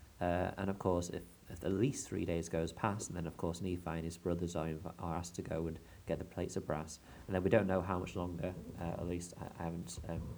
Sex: male